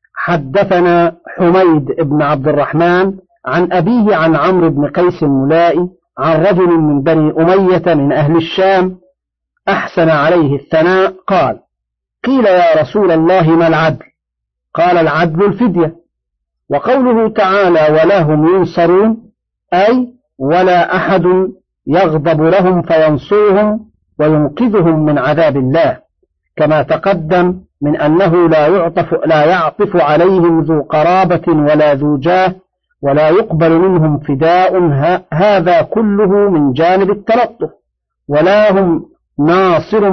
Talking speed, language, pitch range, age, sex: 110 wpm, Arabic, 160-200 Hz, 50-69, male